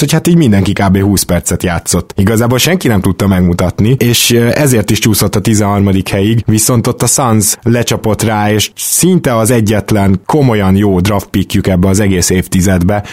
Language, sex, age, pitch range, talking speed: Hungarian, male, 20-39, 100-120 Hz, 170 wpm